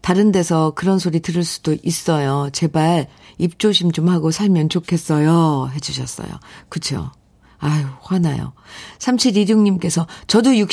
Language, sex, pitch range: Korean, female, 150-205 Hz